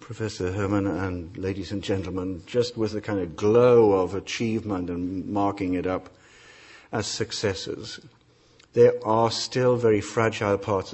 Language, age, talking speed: English, 50-69, 145 wpm